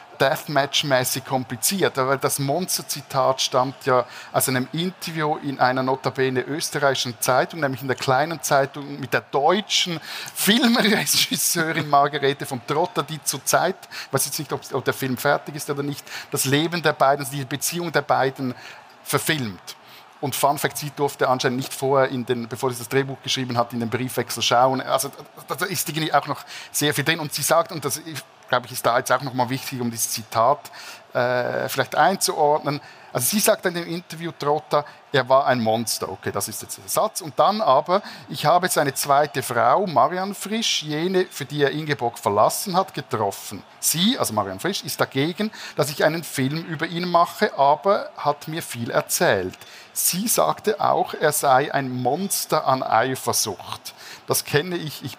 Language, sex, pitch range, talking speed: German, male, 130-160 Hz, 185 wpm